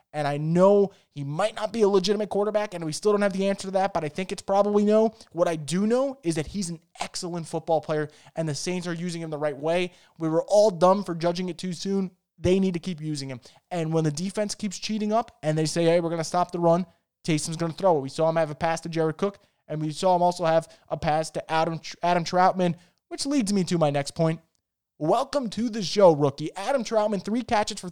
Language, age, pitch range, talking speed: English, 20-39, 160-200 Hz, 260 wpm